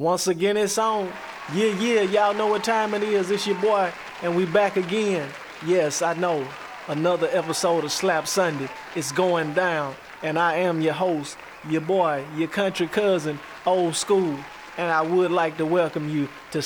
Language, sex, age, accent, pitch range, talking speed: English, male, 20-39, American, 150-180 Hz, 180 wpm